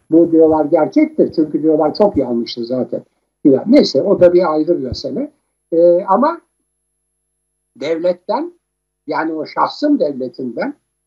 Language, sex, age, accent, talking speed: Turkish, male, 60-79, native, 120 wpm